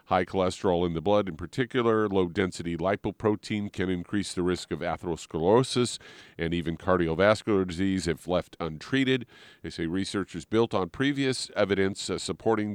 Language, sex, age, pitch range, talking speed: English, male, 50-69, 90-110 Hz, 140 wpm